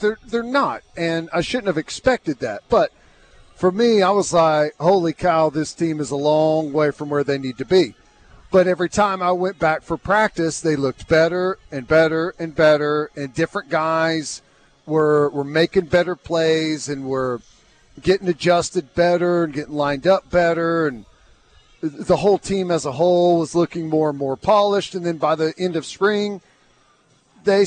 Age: 40-59